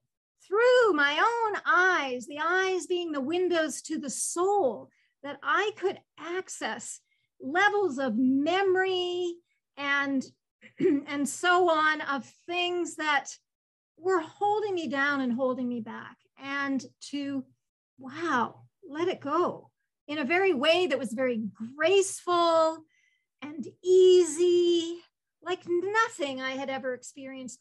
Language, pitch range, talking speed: English, 260-345 Hz, 120 wpm